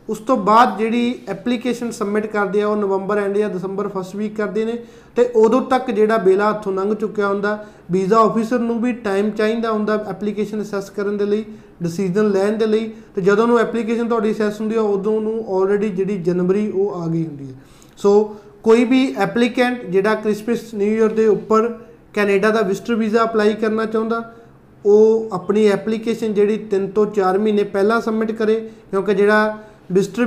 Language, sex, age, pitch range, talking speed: Punjabi, male, 20-39, 200-225 Hz, 150 wpm